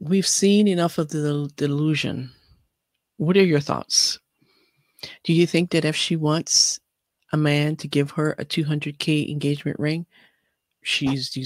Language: English